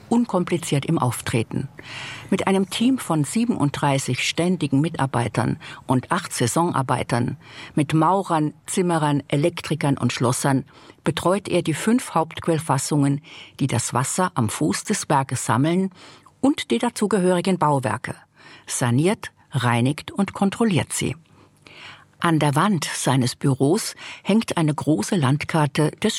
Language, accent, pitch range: German, German, 135-180 Hz